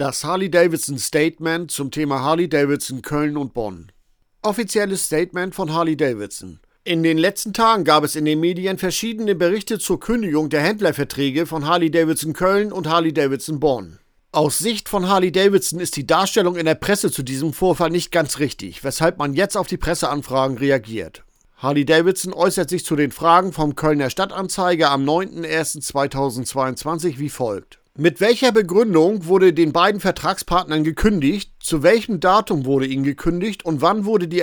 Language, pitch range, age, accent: German, 150-185 Hz, 50-69, German